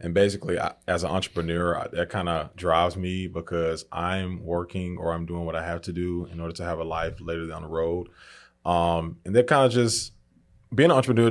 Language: English